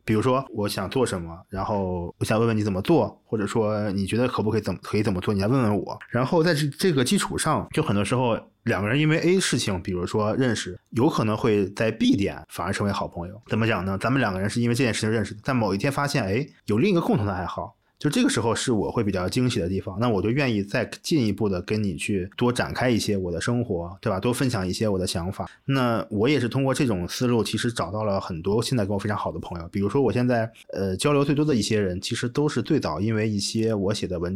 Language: Chinese